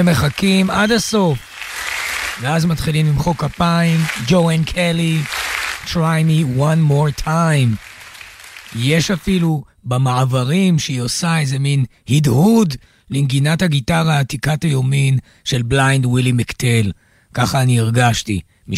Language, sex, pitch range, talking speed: Hebrew, male, 125-170 Hz, 110 wpm